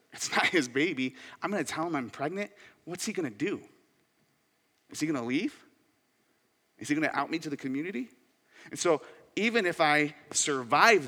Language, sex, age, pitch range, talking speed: English, male, 30-49, 115-155 Hz, 175 wpm